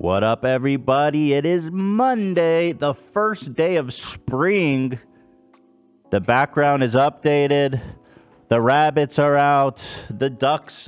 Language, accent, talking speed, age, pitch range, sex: English, American, 115 wpm, 30-49, 90-145 Hz, male